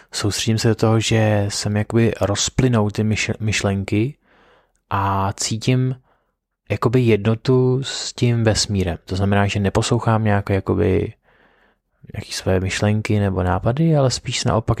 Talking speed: 120 wpm